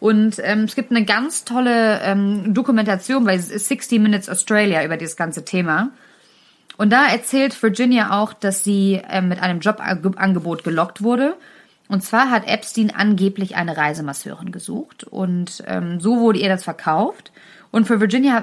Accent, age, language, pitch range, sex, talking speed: German, 30-49, German, 180-225 Hz, female, 165 wpm